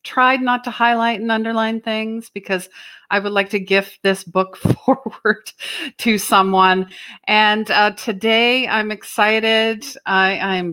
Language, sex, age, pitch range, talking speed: English, female, 50-69, 175-220 Hz, 140 wpm